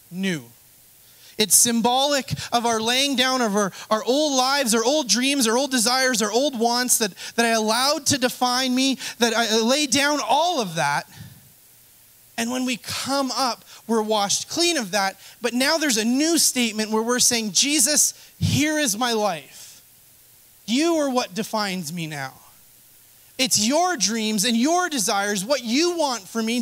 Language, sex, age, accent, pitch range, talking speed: English, male, 30-49, American, 165-250 Hz, 170 wpm